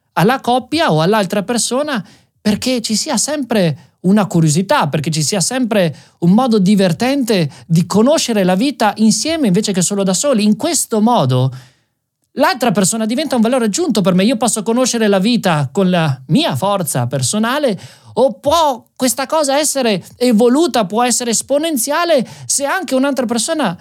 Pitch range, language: 155-235 Hz, Italian